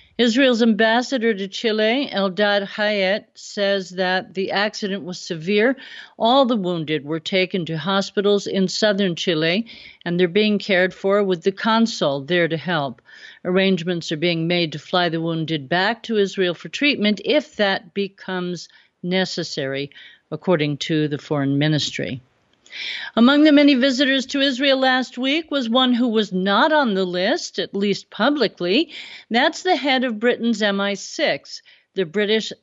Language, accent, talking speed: English, American, 150 wpm